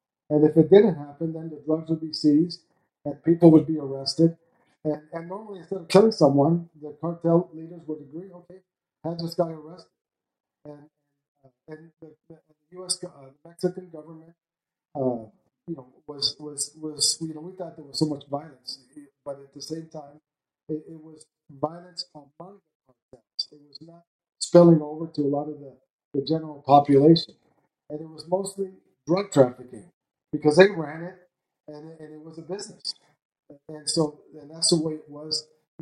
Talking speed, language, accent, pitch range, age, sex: 180 wpm, English, American, 145-165 Hz, 50-69, male